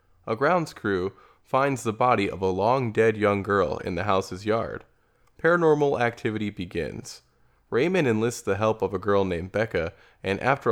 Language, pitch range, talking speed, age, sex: English, 100-125 Hz, 170 wpm, 20-39, male